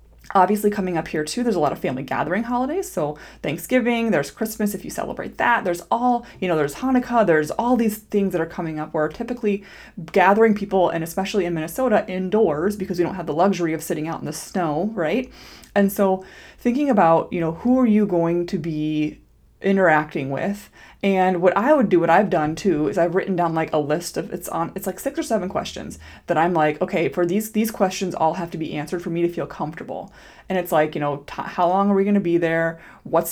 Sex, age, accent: female, 20-39, American